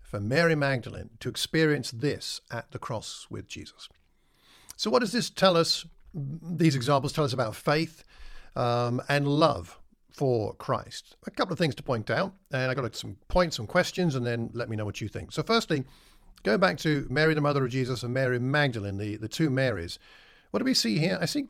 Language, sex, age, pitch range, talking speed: English, male, 50-69, 125-170 Hz, 205 wpm